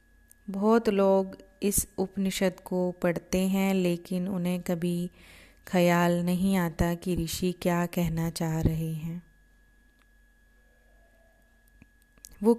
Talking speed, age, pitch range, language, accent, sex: 100 wpm, 30-49, 170-185 Hz, Hindi, native, female